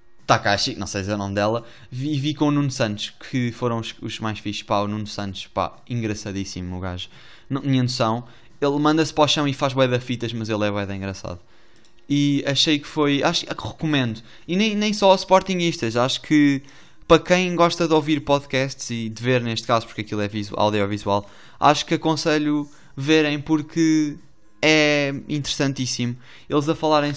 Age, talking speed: 20-39, 185 wpm